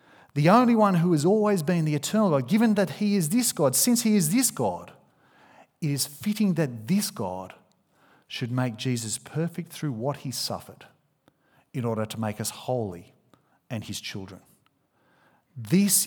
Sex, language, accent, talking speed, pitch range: male, English, Australian, 170 wpm, 130-175 Hz